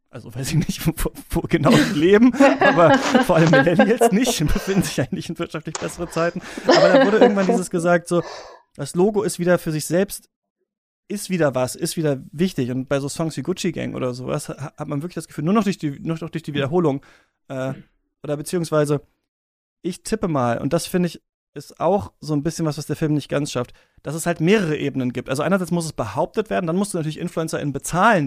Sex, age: male, 30-49